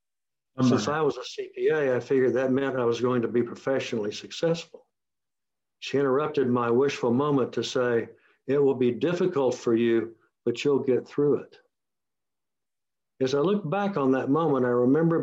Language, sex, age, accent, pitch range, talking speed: English, male, 60-79, American, 125-145 Hz, 170 wpm